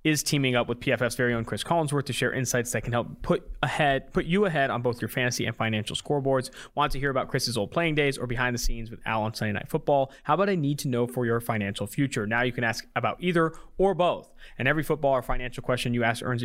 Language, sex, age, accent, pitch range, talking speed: English, male, 20-39, American, 115-140 Hz, 265 wpm